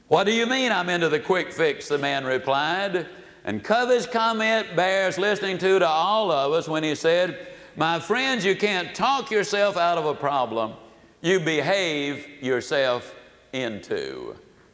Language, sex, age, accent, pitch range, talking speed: English, male, 60-79, American, 160-220 Hz, 160 wpm